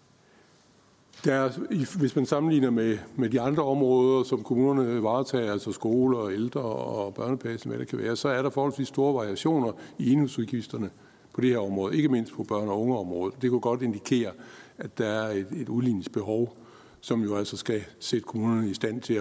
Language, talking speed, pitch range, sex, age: Danish, 180 wpm, 110-130 Hz, male, 60-79